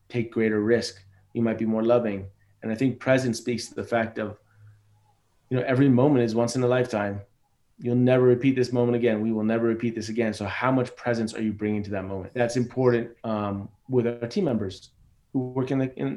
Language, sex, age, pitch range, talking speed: English, male, 30-49, 105-120 Hz, 225 wpm